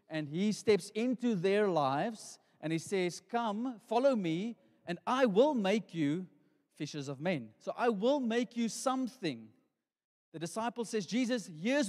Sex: male